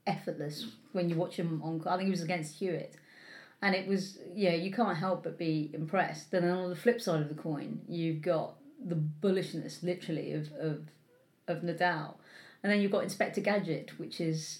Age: 30-49